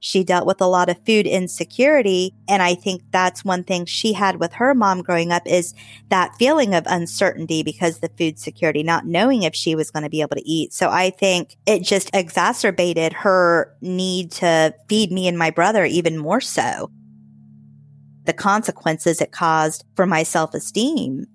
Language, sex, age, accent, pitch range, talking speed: English, female, 30-49, American, 165-195 Hz, 185 wpm